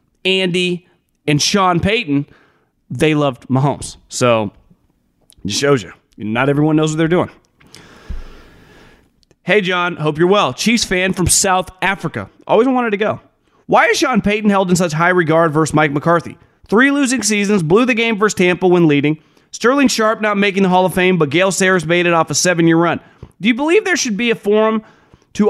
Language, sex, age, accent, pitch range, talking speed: English, male, 30-49, American, 155-200 Hz, 185 wpm